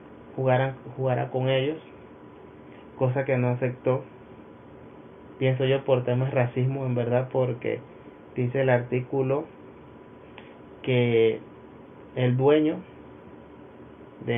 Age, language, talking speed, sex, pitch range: 30-49, Spanish, 95 wpm, male, 115-130 Hz